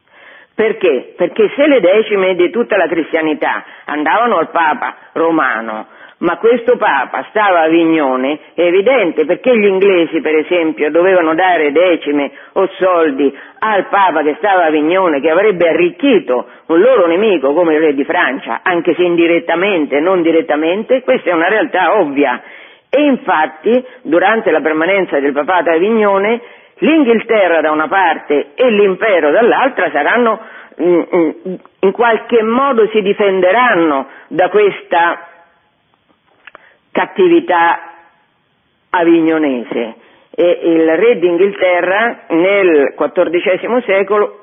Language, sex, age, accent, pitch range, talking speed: Italian, female, 50-69, native, 160-220 Hz, 125 wpm